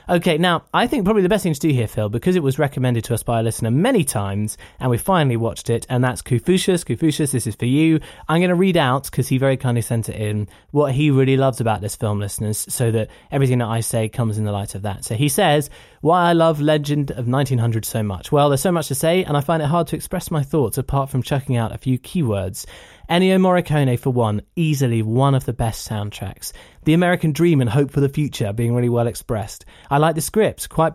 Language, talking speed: English, 250 wpm